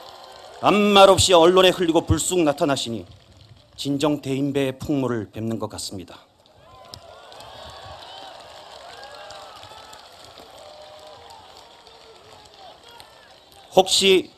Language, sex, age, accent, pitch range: Korean, male, 40-59, native, 125-170 Hz